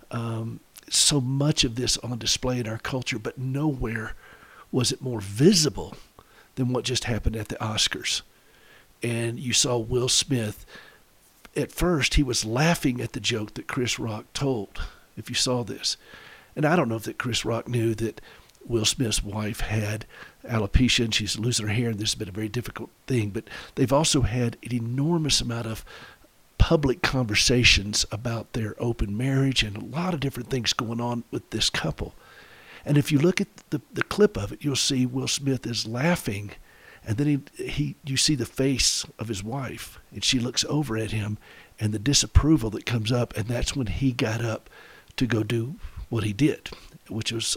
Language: English